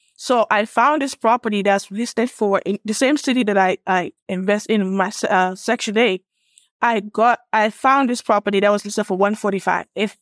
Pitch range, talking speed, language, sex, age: 195-235 Hz, 190 wpm, English, female, 20-39